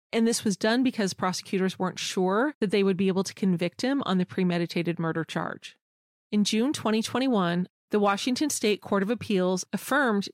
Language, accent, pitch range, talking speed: English, American, 180-220 Hz, 180 wpm